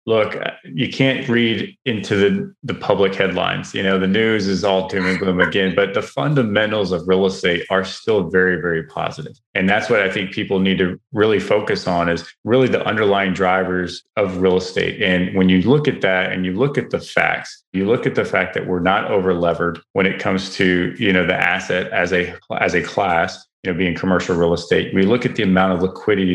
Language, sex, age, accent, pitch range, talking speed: English, male, 30-49, American, 90-105 Hz, 220 wpm